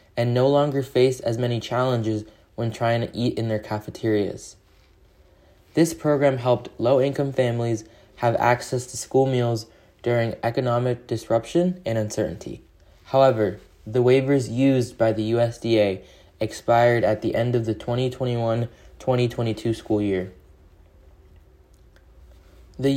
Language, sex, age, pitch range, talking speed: English, male, 20-39, 105-130 Hz, 120 wpm